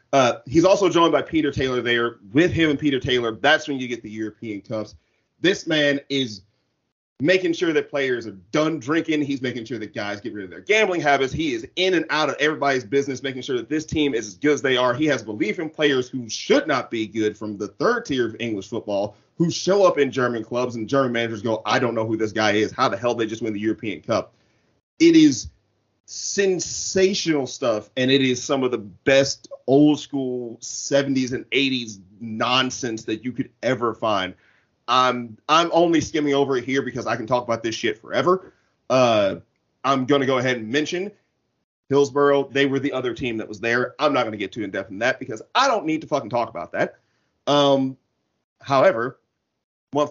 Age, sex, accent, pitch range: 30-49, male, American, 115-145 Hz